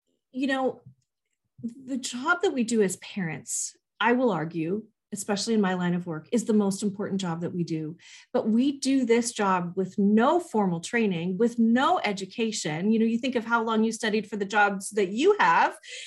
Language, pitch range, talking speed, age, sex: English, 195-265 Hz, 200 wpm, 40-59, female